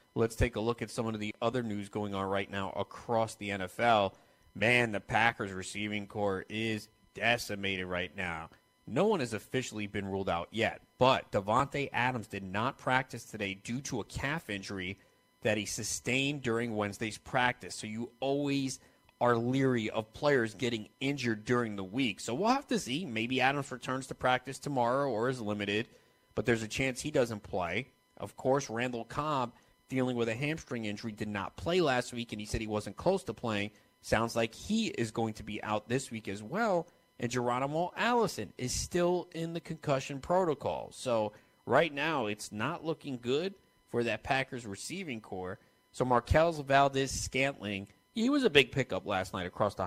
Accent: American